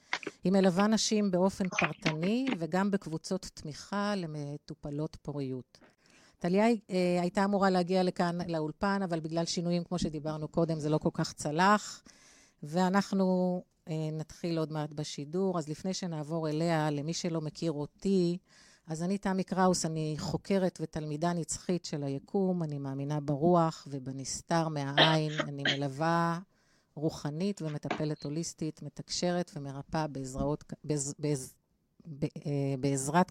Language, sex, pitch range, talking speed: Hebrew, female, 150-185 Hz, 115 wpm